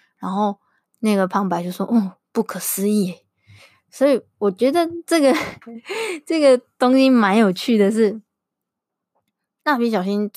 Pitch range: 185-235 Hz